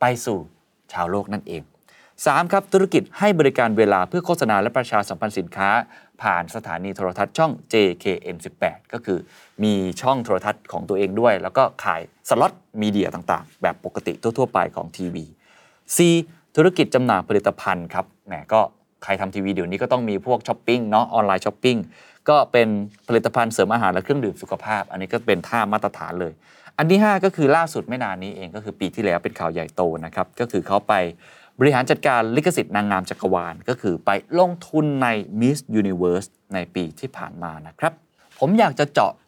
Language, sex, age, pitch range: Thai, male, 20-39, 90-125 Hz